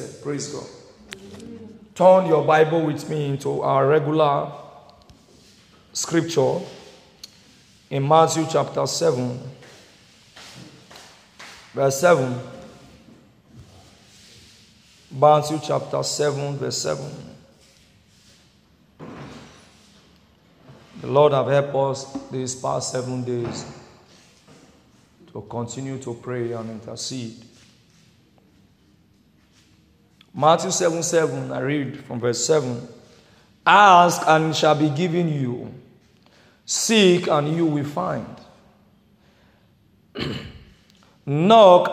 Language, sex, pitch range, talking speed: English, male, 135-170 Hz, 85 wpm